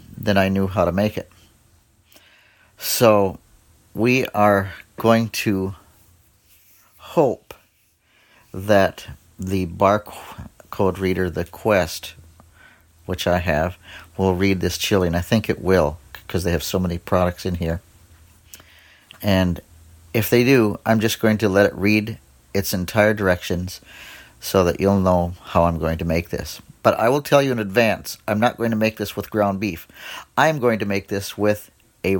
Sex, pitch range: male, 90-110 Hz